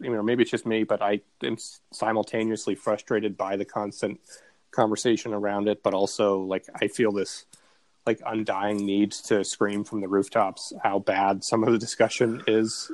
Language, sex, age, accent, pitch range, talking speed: English, male, 30-49, American, 100-115 Hz, 175 wpm